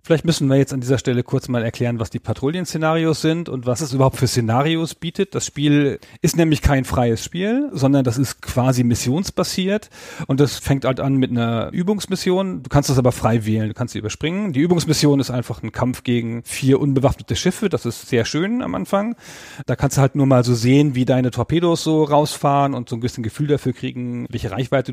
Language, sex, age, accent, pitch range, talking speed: German, male, 40-59, German, 125-150 Hz, 215 wpm